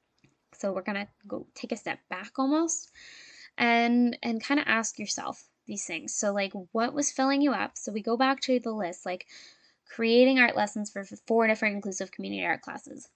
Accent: American